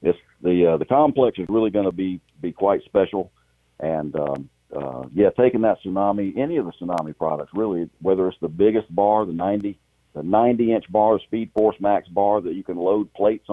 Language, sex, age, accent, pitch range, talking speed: English, male, 50-69, American, 75-110 Hz, 205 wpm